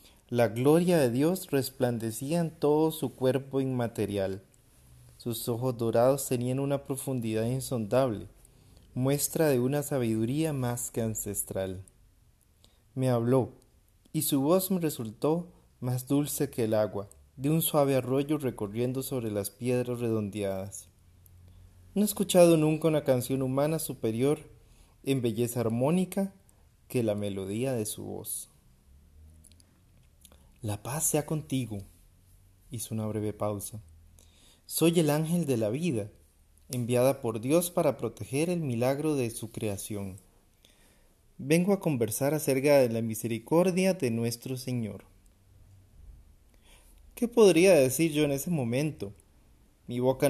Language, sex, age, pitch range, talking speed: Spanish, male, 30-49, 100-140 Hz, 125 wpm